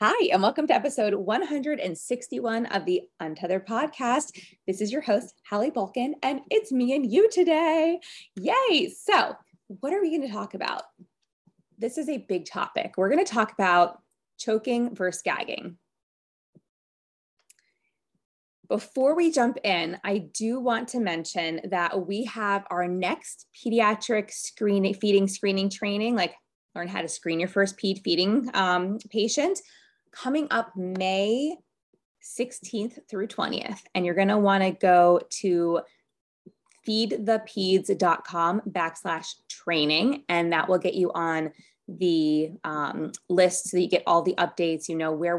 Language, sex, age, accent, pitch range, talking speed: English, female, 20-39, American, 175-235 Hz, 140 wpm